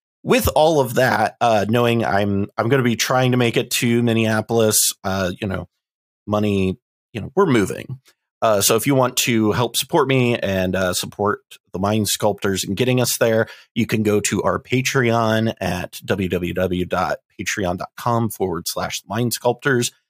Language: English